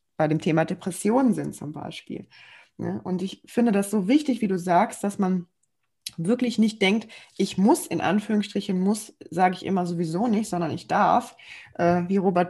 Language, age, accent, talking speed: German, 20-39, German, 180 wpm